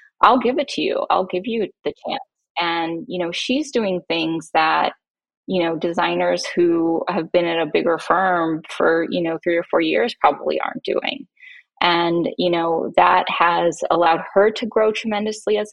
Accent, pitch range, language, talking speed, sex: American, 165-210 Hz, English, 185 wpm, female